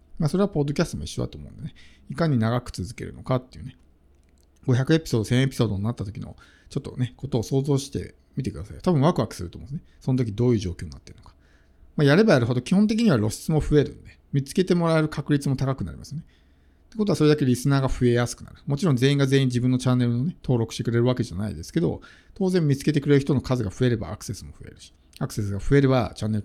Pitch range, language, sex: 100-145 Hz, Japanese, male